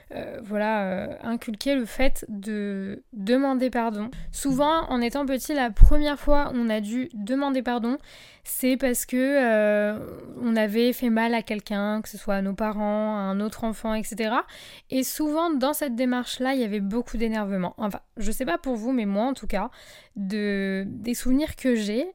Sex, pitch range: female, 215-275 Hz